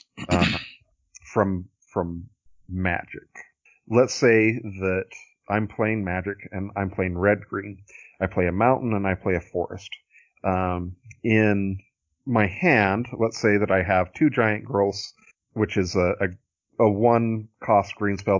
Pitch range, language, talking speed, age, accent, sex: 95-115 Hz, English, 150 wpm, 40-59, American, male